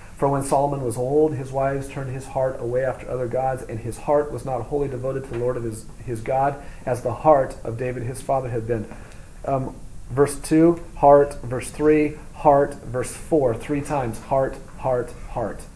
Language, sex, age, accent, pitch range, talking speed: English, male, 40-59, American, 115-145 Hz, 195 wpm